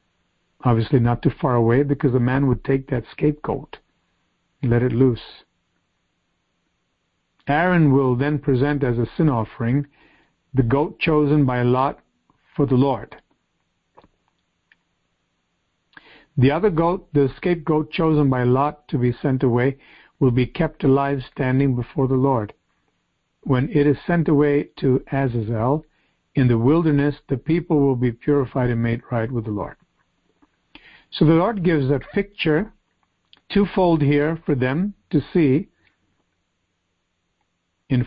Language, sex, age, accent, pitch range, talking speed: English, male, 50-69, American, 120-155 Hz, 135 wpm